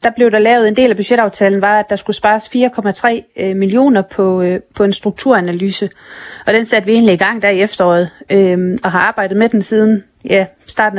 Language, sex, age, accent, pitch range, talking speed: Danish, female, 30-49, native, 190-235 Hz, 195 wpm